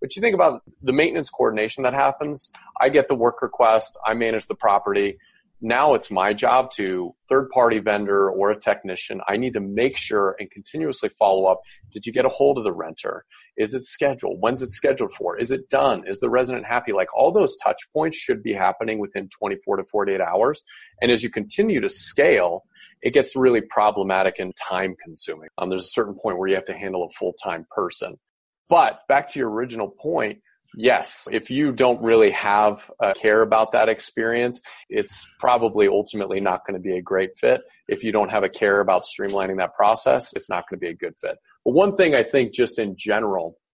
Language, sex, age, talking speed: English, male, 30-49, 205 wpm